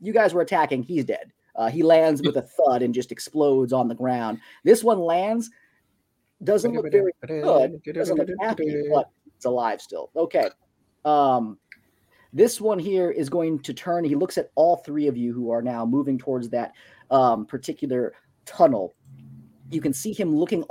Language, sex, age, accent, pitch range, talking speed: English, male, 30-49, American, 130-170 Hz, 180 wpm